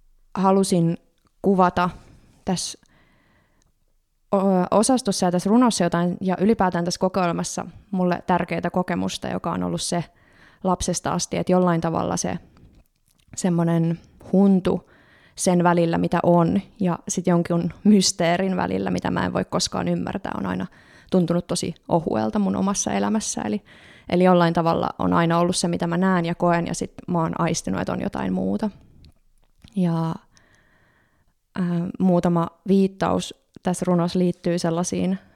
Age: 20-39